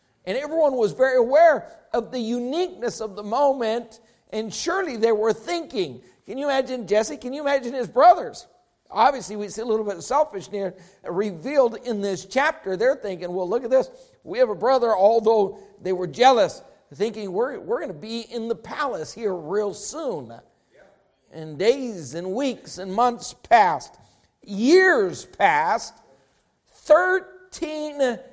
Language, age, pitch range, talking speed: English, 60-79, 205-275 Hz, 155 wpm